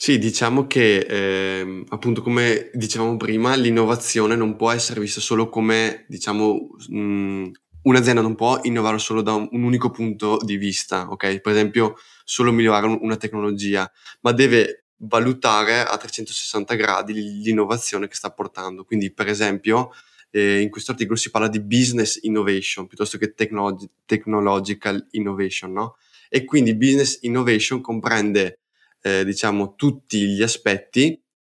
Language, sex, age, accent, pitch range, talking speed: Italian, male, 20-39, native, 100-115 Hz, 145 wpm